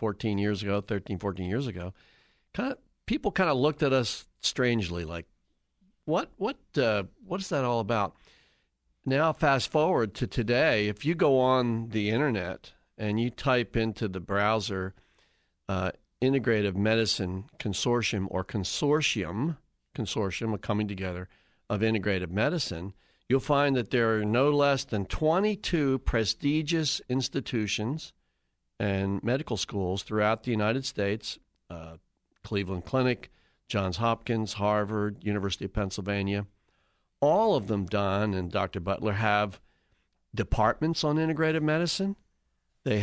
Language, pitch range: English, 100-135 Hz